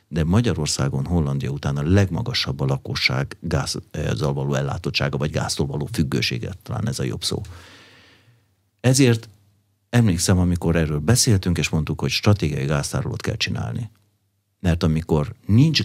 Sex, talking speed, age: male, 135 wpm, 50-69